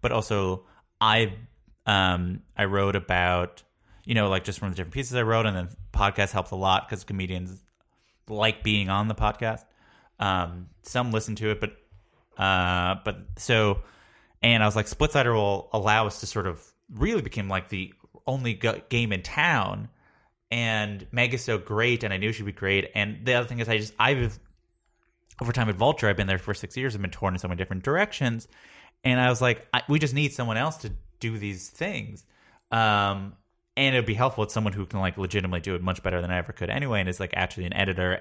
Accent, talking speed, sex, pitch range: American, 215 wpm, male, 95-115 Hz